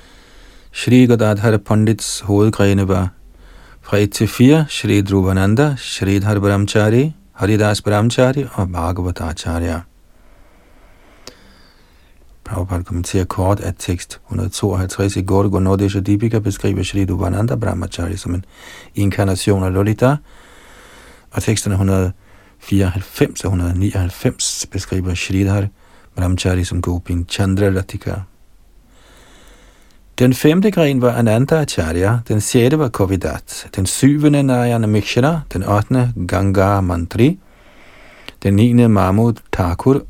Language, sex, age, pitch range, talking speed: Danish, male, 40-59, 90-110 Hz, 110 wpm